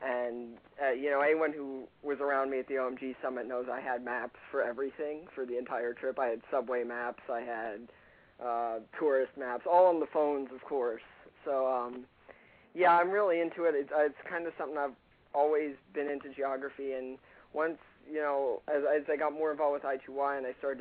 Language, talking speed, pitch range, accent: English, 200 wpm, 125-145 Hz, American